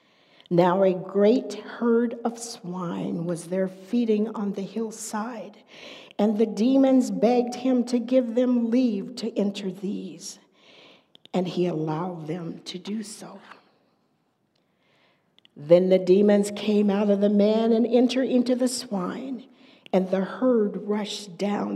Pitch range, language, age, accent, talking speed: 195-245 Hz, English, 50-69, American, 135 wpm